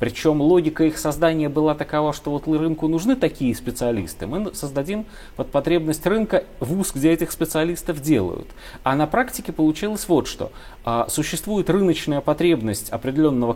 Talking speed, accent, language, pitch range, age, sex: 150 wpm, native, Russian, 120-170 Hz, 30-49, male